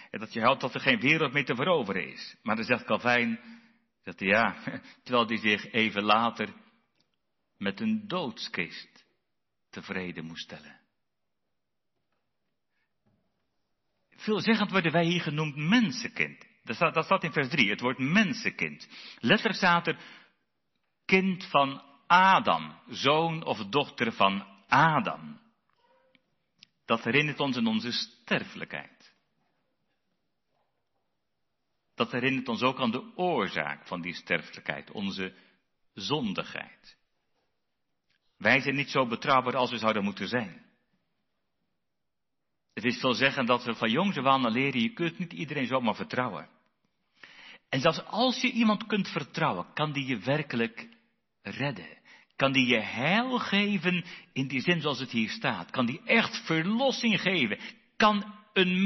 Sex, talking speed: male, 135 wpm